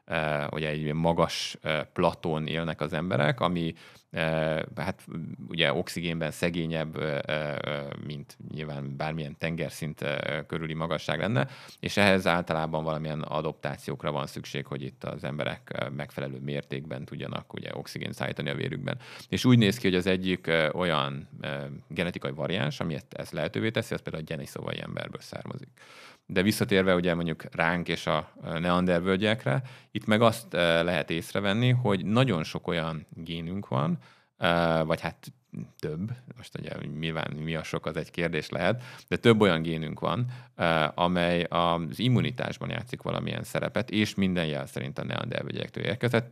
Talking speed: 140 wpm